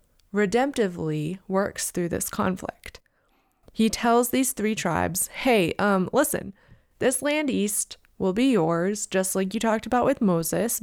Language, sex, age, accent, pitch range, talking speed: English, female, 20-39, American, 185-245 Hz, 145 wpm